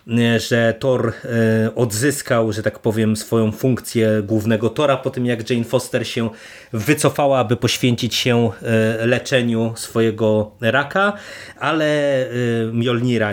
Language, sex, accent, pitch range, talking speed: Polish, male, native, 110-125 Hz, 115 wpm